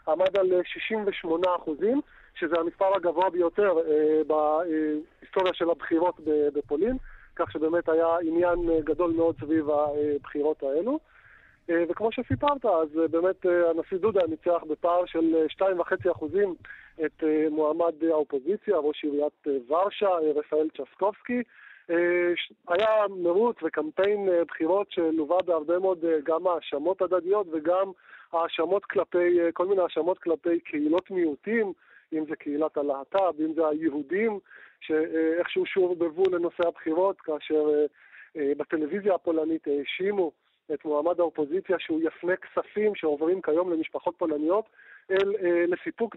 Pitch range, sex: 155-190 Hz, male